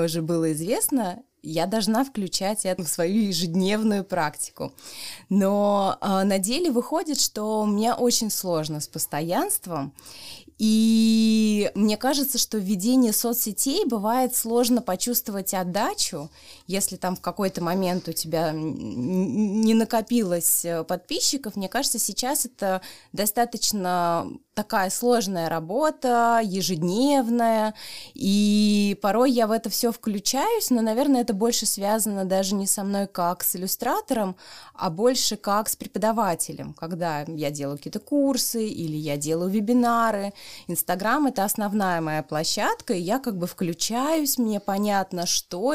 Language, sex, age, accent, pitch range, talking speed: Russian, female, 20-39, native, 180-235 Hz, 125 wpm